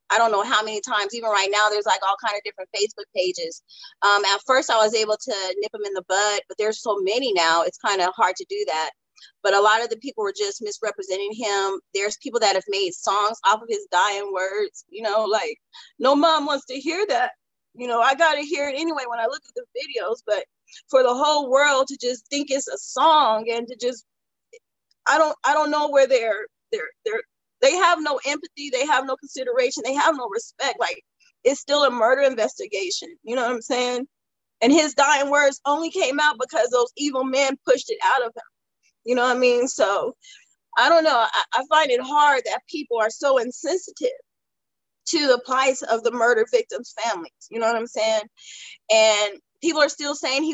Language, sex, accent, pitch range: English, female, American, 220-320 Hz